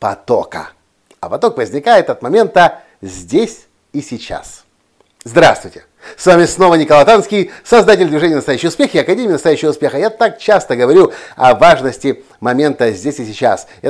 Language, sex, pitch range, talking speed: Russian, male, 135-205 Hz, 145 wpm